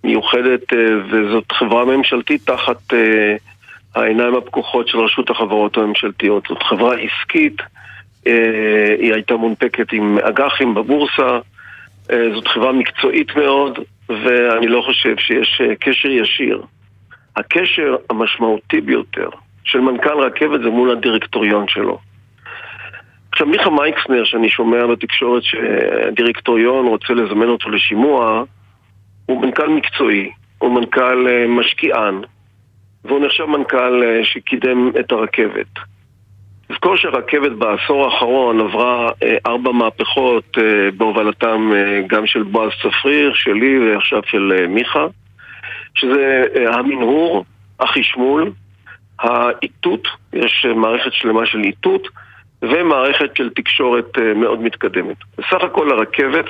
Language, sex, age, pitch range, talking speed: Hebrew, male, 50-69, 105-130 Hz, 105 wpm